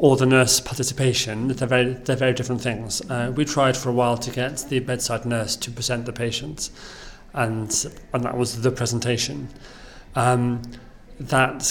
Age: 40-59